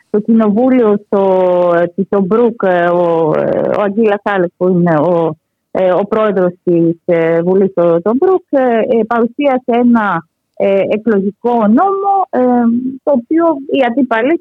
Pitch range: 200-270 Hz